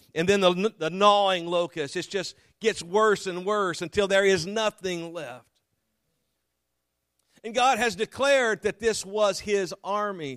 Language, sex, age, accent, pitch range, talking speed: English, male, 50-69, American, 150-185 Hz, 150 wpm